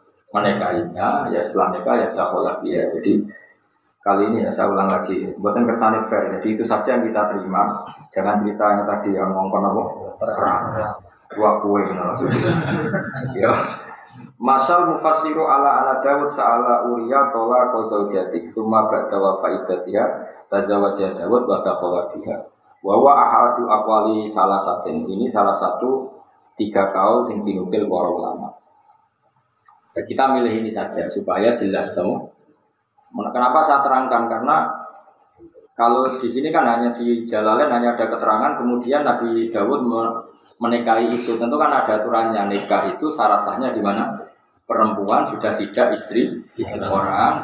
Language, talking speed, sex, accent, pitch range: Indonesian, 110 wpm, male, native, 110-135 Hz